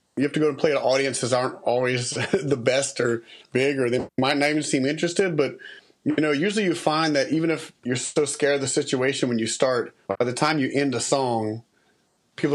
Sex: male